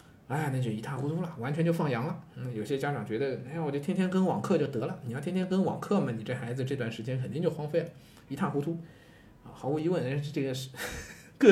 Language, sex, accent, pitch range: Chinese, male, native, 120-160 Hz